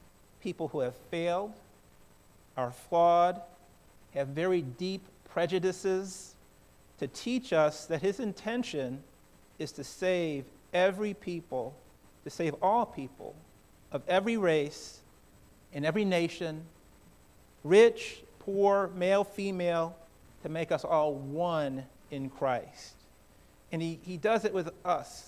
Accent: American